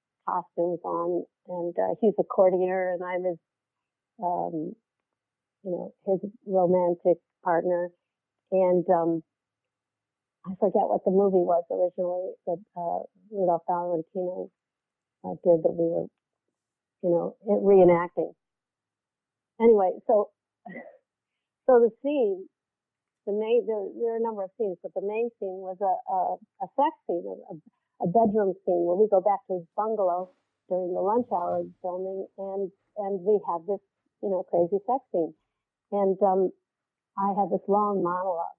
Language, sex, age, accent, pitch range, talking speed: English, female, 50-69, American, 175-200 Hz, 150 wpm